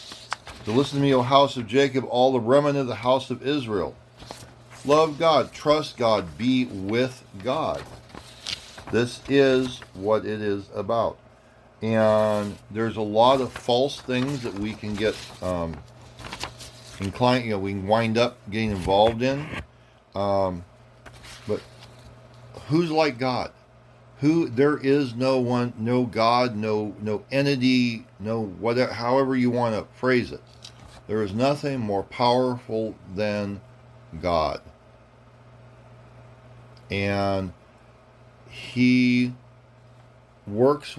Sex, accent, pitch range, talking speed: male, American, 110-125 Hz, 125 wpm